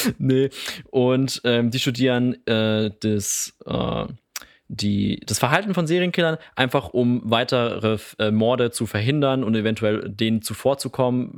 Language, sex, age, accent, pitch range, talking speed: German, male, 20-39, German, 110-135 Hz, 130 wpm